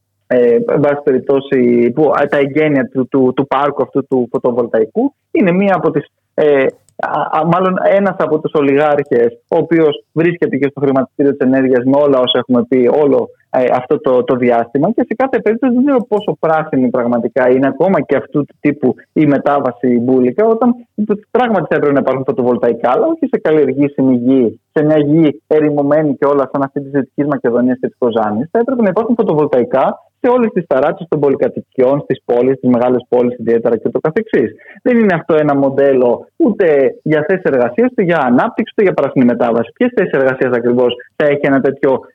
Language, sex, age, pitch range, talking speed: Greek, male, 20-39, 130-200 Hz, 185 wpm